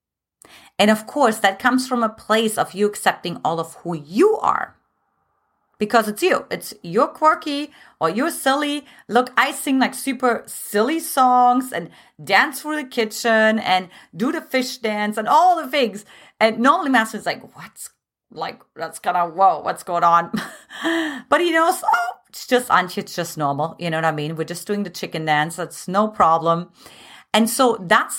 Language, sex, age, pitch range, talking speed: English, female, 30-49, 175-260 Hz, 185 wpm